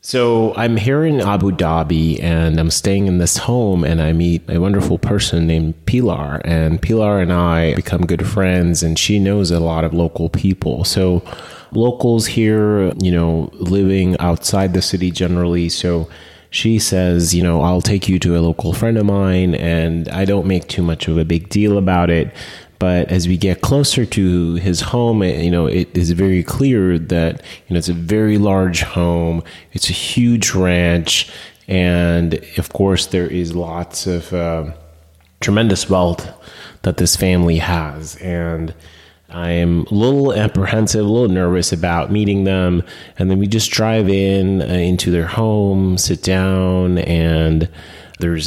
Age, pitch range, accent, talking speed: 30-49, 85-100 Hz, American, 170 wpm